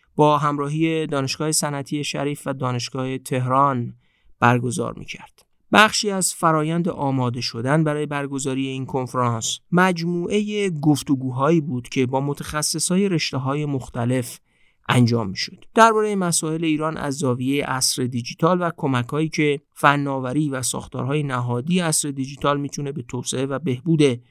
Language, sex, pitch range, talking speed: Persian, male, 130-165 Hz, 130 wpm